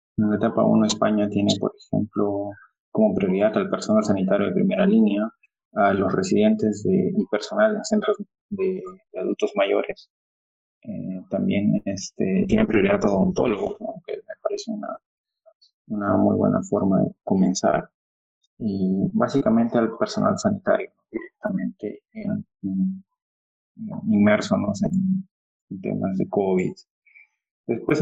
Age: 20-39